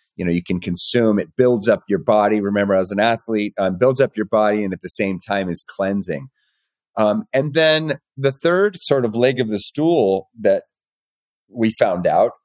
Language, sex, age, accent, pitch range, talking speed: English, male, 30-49, American, 100-125 Hz, 200 wpm